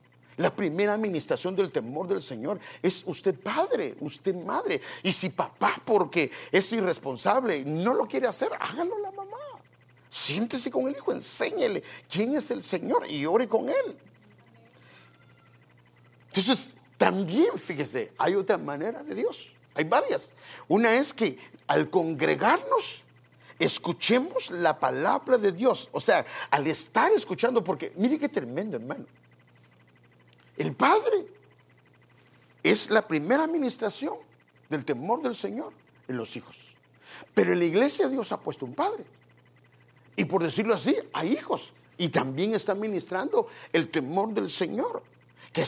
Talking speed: 140 wpm